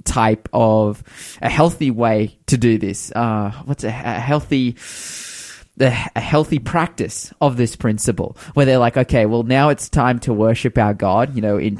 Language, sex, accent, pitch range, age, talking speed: English, male, Australian, 110-130 Hz, 20-39, 175 wpm